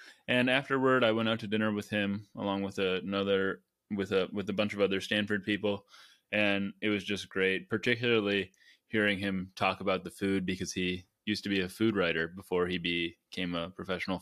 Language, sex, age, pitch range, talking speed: English, male, 20-39, 95-110 Hz, 200 wpm